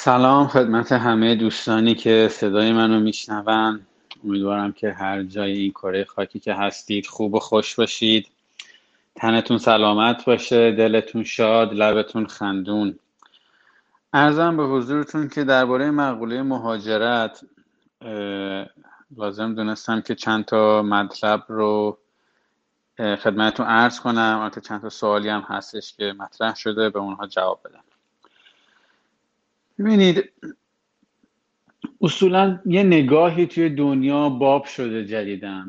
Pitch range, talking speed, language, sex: 105-125 Hz, 110 wpm, Persian, male